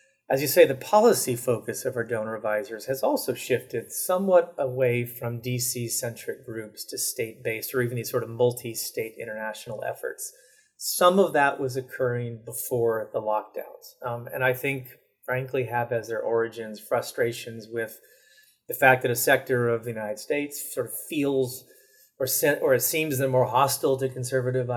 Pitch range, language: 115-135 Hz, English